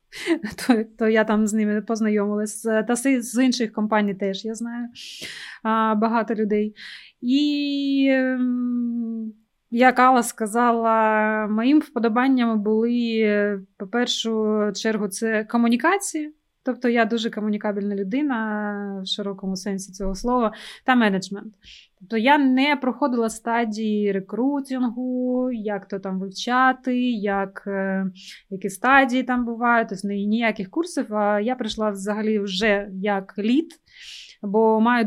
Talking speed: 120 wpm